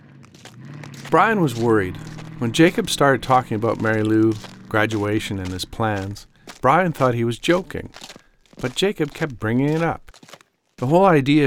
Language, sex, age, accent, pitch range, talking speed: English, male, 50-69, American, 100-135 Hz, 145 wpm